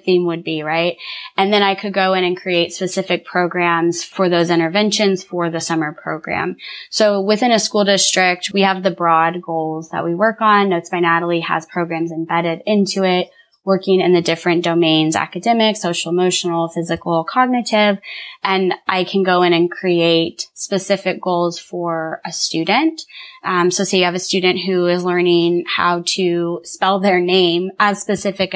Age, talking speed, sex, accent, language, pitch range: 20-39, 170 wpm, female, American, English, 170-195 Hz